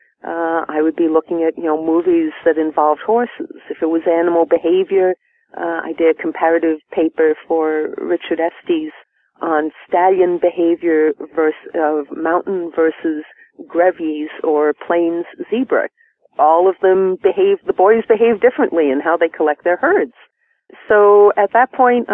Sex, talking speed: female, 150 wpm